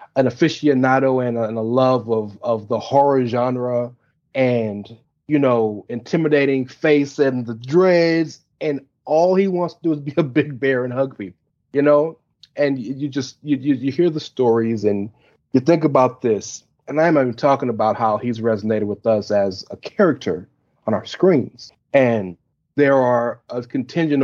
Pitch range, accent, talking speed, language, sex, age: 115-145 Hz, American, 175 wpm, English, male, 30-49